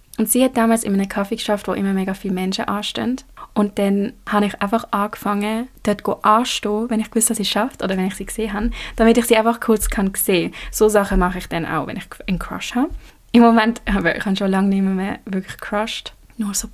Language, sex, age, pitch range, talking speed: German, female, 20-39, 195-230 Hz, 235 wpm